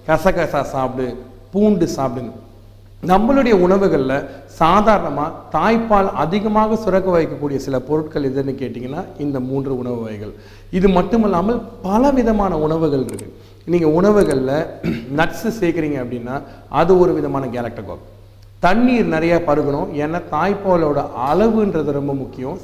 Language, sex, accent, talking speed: Tamil, male, native, 110 wpm